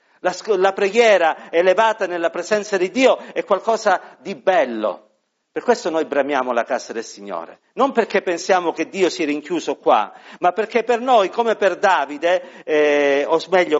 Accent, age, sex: native, 50-69, male